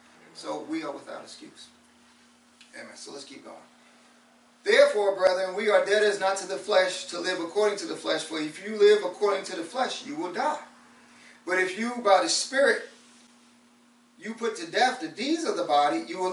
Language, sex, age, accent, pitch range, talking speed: English, male, 30-49, American, 165-225 Hz, 200 wpm